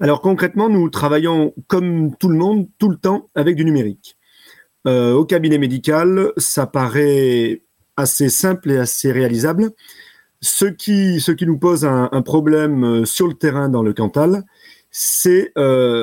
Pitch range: 135-185 Hz